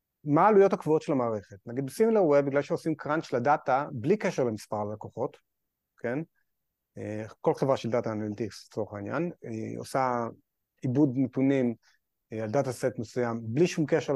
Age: 30-49